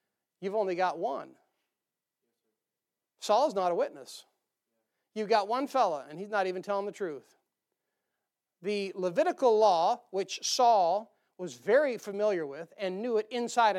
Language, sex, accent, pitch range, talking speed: English, male, American, 195-235 Hz, 140 wpm